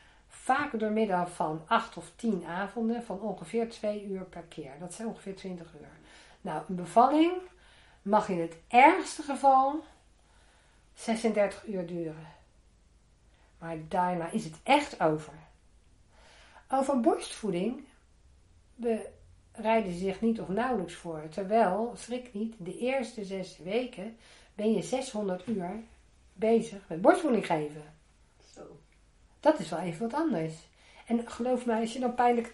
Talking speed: 135 wpm